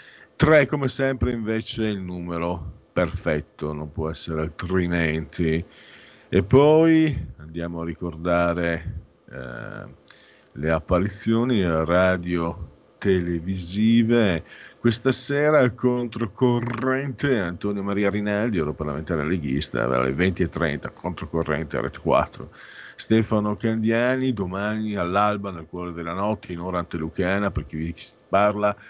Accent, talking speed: native, 100 wpm